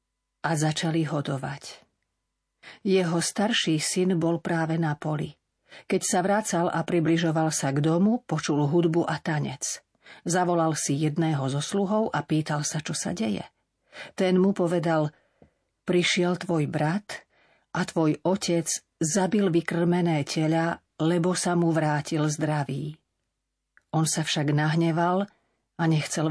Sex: female